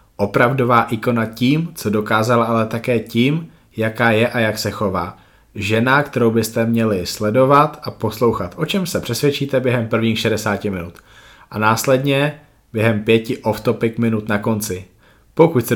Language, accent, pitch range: Czech, native, 105-125 Hz